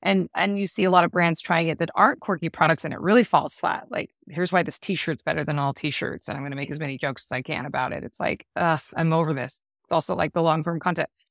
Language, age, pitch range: English, 20-39, 155-190 Hz